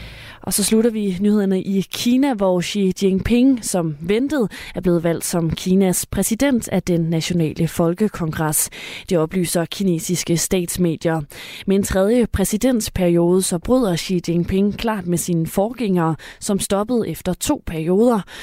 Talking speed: 140 wpm